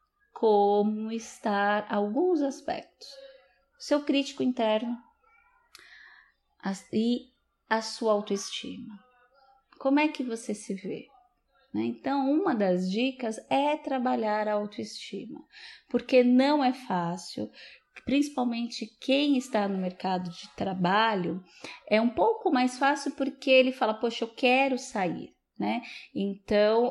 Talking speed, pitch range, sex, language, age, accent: 110 wpm, 195-265 Hz, female, Portuguese, 20-39, Brazilian